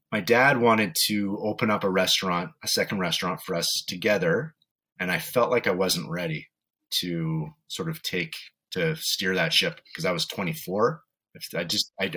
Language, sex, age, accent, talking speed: English, male, 30-49, American, 180 wpm